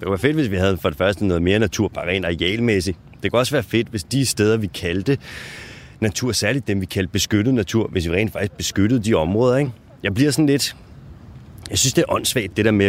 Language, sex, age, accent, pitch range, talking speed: Danish, male, 30-49, native, 100-130 Hz, 245 wpm